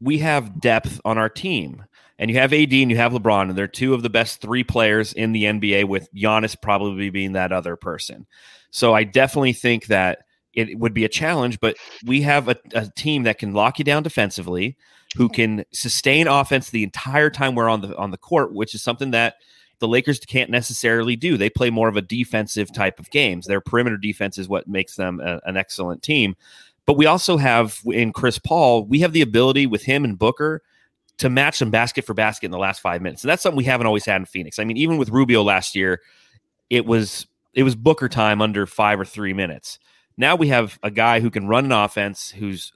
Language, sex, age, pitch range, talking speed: English, male, 30-49, 100-130 Hz, 225 wpm